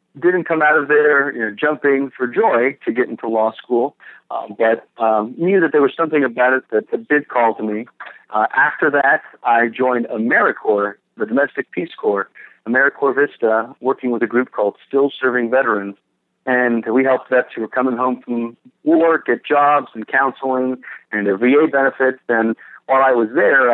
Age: 40-59